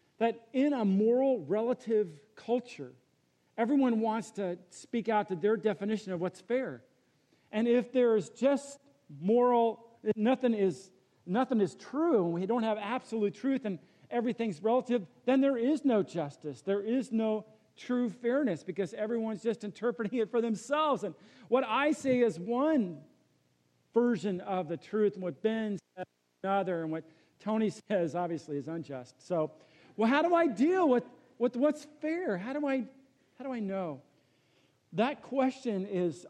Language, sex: English, male